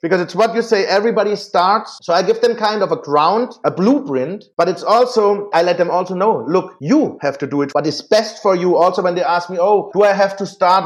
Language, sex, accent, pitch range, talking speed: English, male, German, 170-225 Hz, 260 wpm